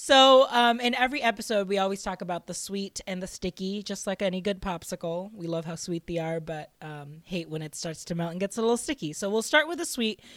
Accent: American